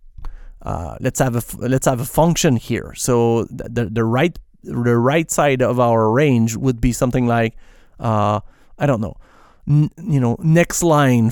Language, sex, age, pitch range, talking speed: English, male, 30-49, 115-145 Hz, 180 wpm